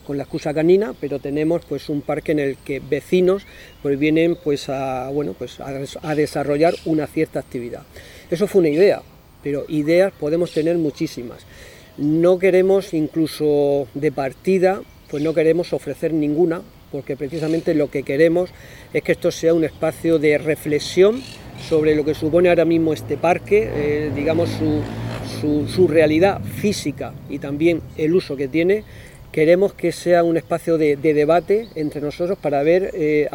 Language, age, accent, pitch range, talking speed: Spanish, 40-59, Spanish, 145-175 Hz, 165 wpm